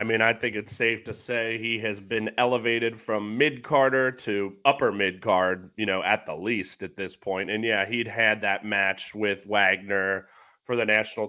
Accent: American